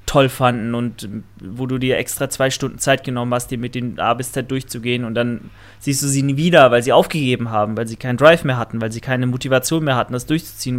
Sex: male